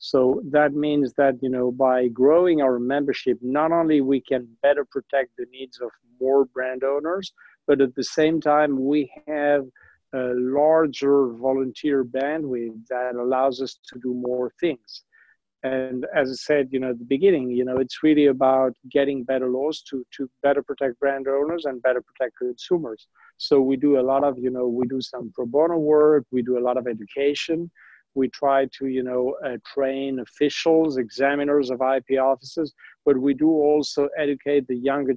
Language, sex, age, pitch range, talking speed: English, male, 50-69, 130-150 Hz, 180 wpm